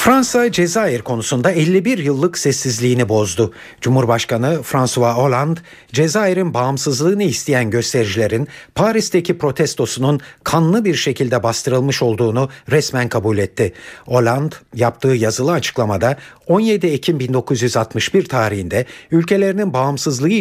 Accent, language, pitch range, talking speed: native, Turkish, 120-150 Hz, 100 wpm